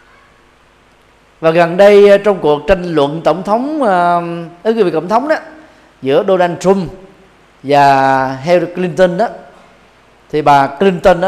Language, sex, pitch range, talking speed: Vietnamese, male, 155-215 Hz, 135 wpm